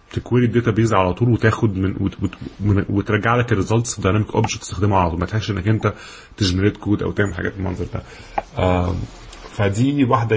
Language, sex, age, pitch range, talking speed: Arabic, male, 20-39, 95-110 Hz, 170 wpm